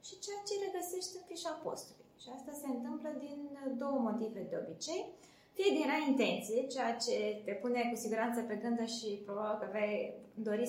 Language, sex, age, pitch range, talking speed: Romanian, female, 20-39, 230-305 Hz, 180 wpm